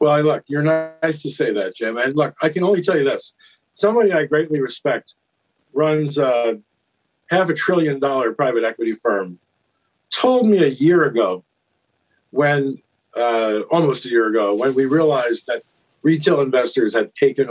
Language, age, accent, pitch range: English, 50-69, American, 150-210 Hz